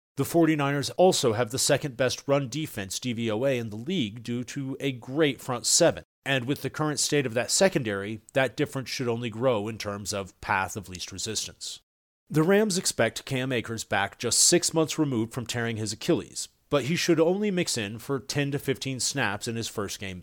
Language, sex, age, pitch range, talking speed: English, male, 40-59, 105-140 Hz, 200 wpm